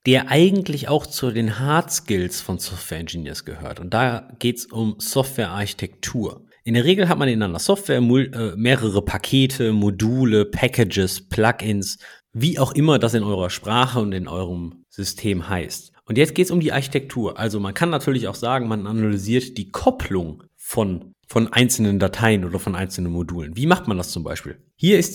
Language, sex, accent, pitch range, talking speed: German, male, German, 100-145 Hz, 180 wpm